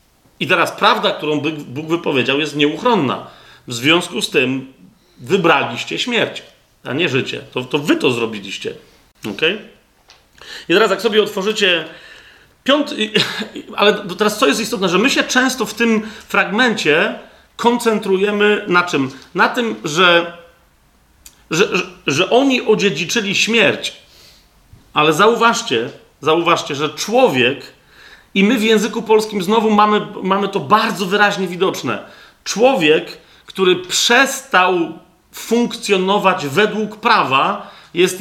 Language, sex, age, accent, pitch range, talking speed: Polish, male, 40-59, native, 160-220 Hz, 120 wpm